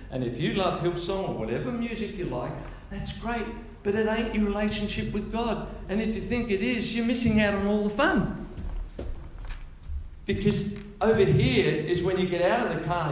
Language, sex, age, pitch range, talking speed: English, male, 50-69, 120-185 Hz, 195 wpm